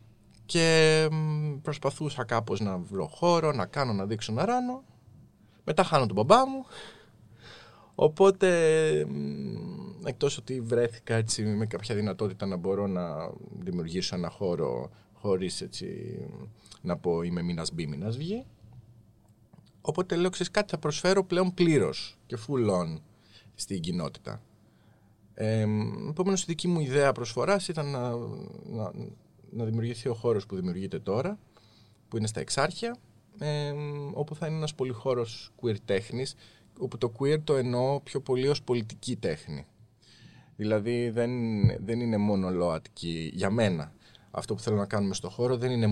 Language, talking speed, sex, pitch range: Greek, 135 wpm, male, 105-145 Hz